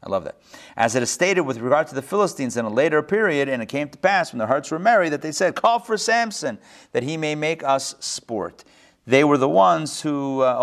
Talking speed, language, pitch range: 250 wpm, English, 115-155 Hz